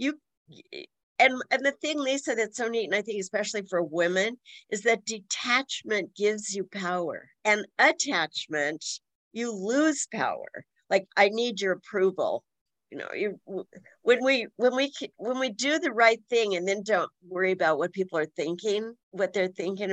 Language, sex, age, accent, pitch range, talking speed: English, female, 50-69, American, 185-235 Hz, 170 wpm